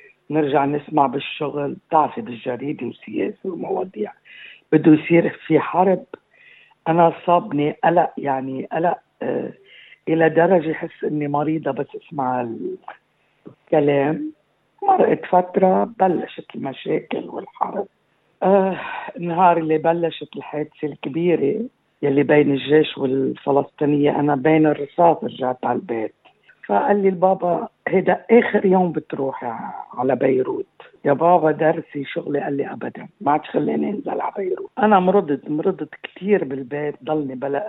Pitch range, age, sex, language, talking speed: 145-185 Hz, 50-69, female, Arabic, 120 wpm